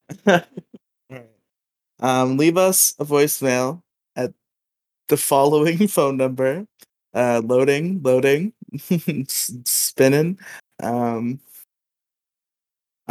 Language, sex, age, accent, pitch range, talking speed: English, male, 20-39, American, 135-190 Hz, 75 wpm